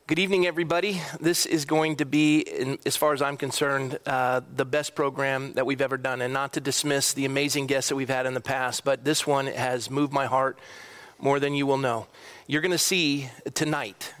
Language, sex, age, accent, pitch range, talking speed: English, male, 40-59, American, 140-165 Hz, 210 wpm